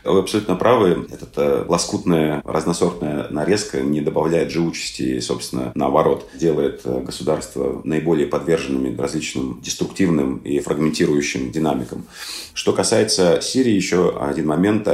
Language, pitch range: Russian, 80-105 Hz